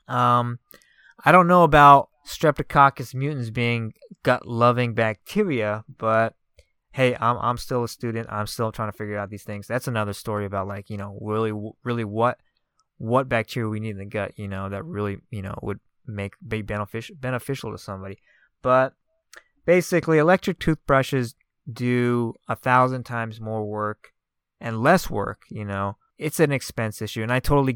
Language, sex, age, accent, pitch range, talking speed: English, male, 20-39, American, 105-130 Hz, 170 wpm